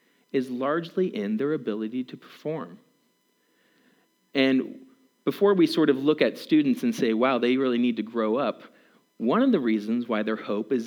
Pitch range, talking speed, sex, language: 110-170 Hz, 175 wpm, male, English